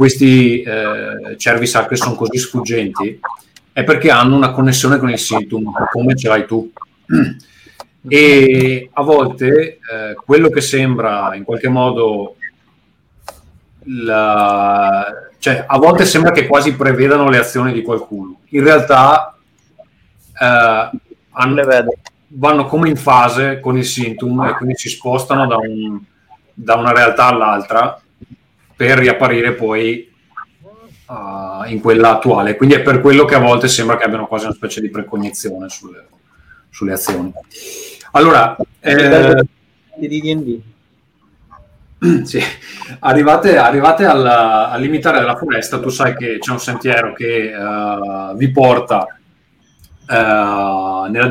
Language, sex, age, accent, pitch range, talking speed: Italian, male, 30-49, native, 110-130 Hz, 120 wpm